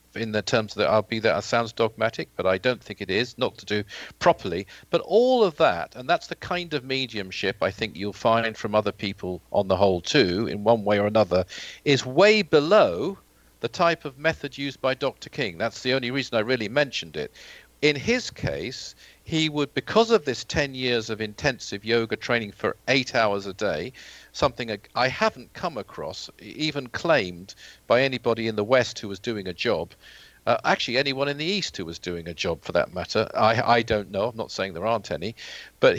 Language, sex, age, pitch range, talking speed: English, male, 50-69, 105-140 Hz, 210 wpm